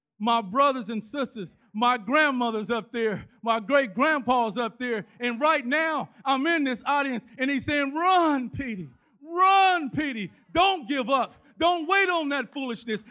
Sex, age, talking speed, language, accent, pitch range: male, 40-59, 155 wpm, English, American, 240-320 Hz